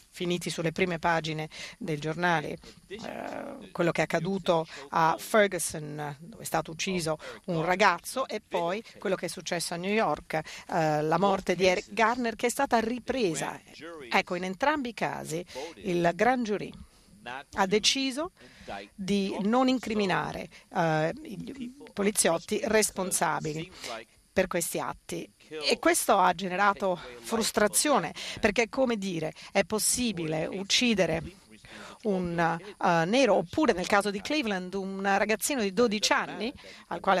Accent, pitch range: native, 170-230 Hz